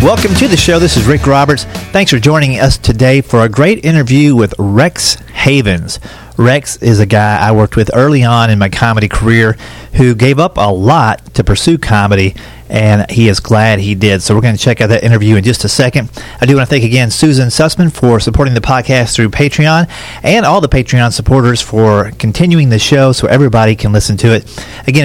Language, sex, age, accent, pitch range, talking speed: English, male, 40-59, American, 110-140 Hz, 215 wpm